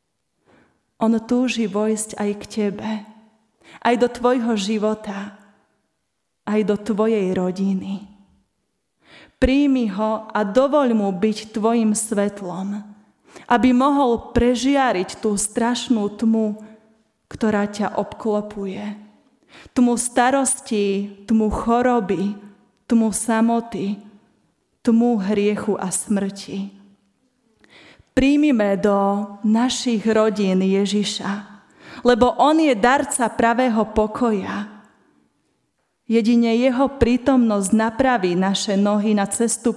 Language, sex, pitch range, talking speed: Slovak, female, 200-235 Hz, 90 wpm